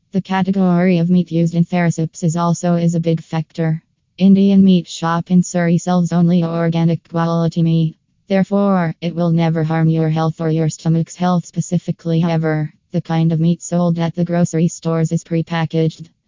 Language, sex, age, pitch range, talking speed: English, female, 20-39, 165-175 Hz, 175 wpm